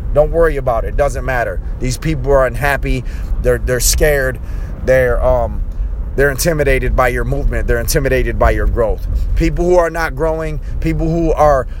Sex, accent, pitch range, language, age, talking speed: male, American, 105-160 Hz, English, 30-49, 170 wpm